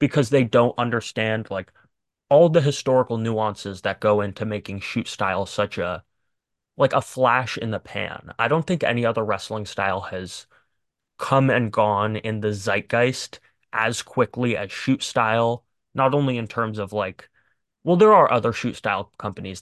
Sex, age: male, 20-39